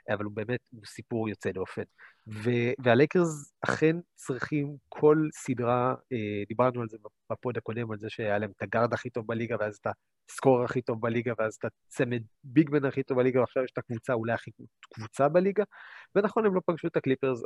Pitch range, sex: 110-145 Hz, male